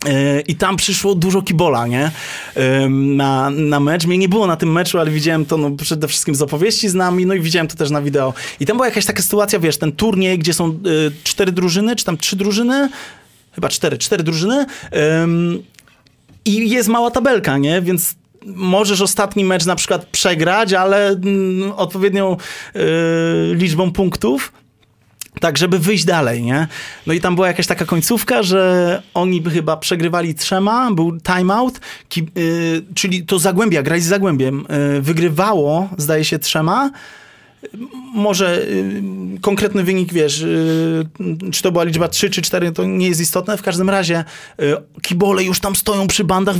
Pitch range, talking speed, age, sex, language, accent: 165-205 Hz, 160 wpm, 30-49, male, Polish, native